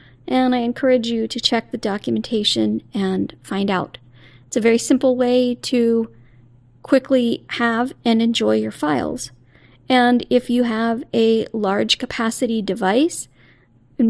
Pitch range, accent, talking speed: 195-255 Hz, American, 135 wpm